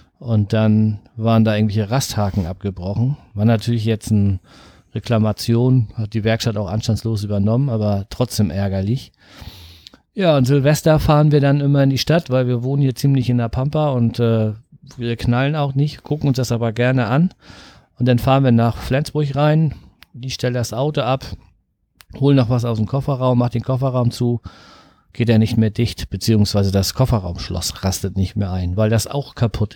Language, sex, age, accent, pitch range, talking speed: German, male, 40-59, German, 110-135 Hz, 180 wpm